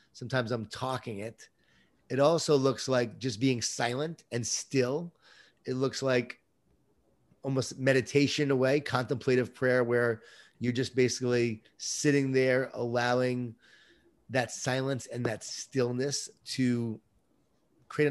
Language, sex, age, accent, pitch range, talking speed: English, male, 30-49, American, 120-135 Hz, 115 wpm